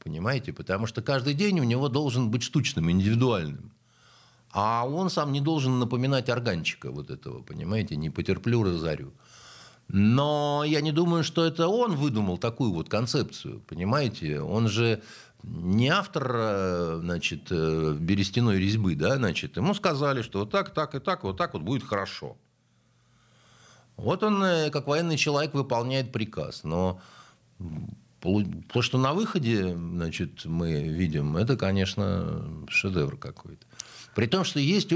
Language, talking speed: Russian, 140 wpm